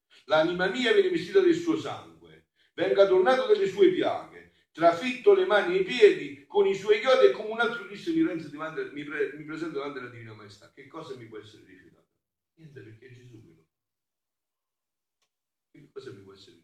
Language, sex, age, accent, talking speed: Italian, male, 50-69, native, 190 wpm